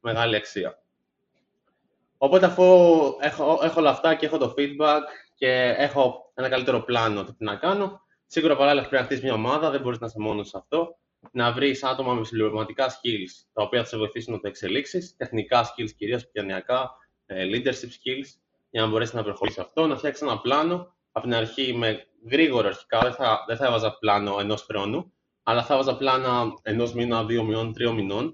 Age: 20-39